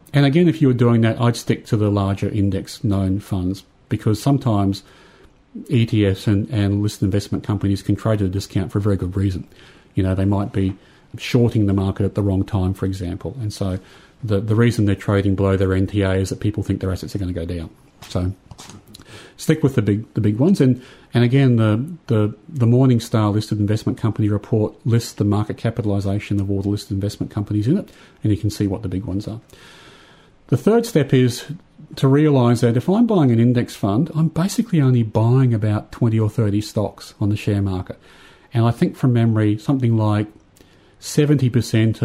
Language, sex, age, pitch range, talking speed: English, male, 40-59, 100-125 Hz, 205 wpm